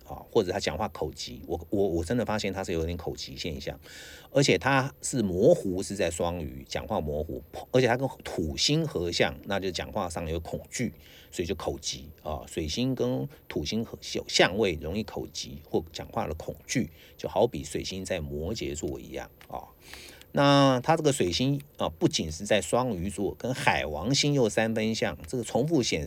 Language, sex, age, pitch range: English, male, 50-69, 75-110 Hz